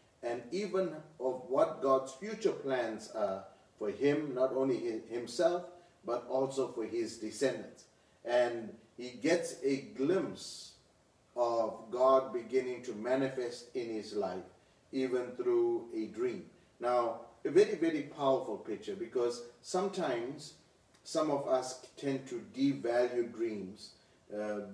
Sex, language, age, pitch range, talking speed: male, English, 40-59, 115-155 Hz, 125 wpm